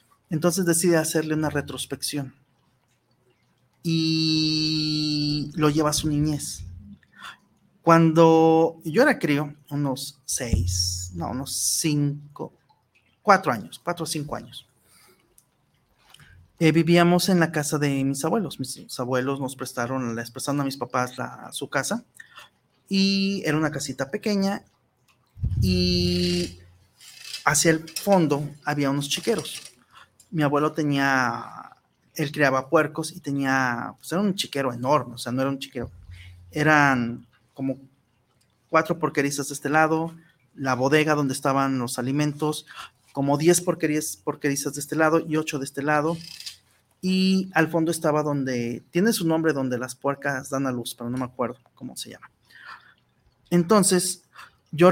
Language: Spanish